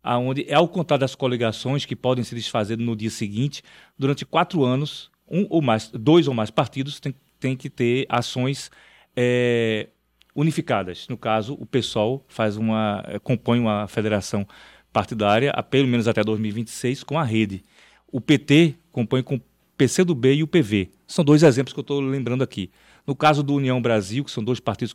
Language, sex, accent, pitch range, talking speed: Portuguese, male, Brazilian, 110-140 Hz, 180 wpm